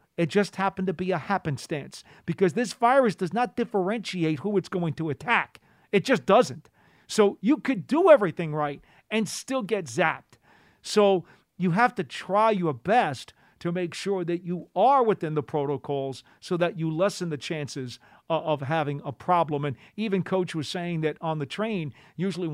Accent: American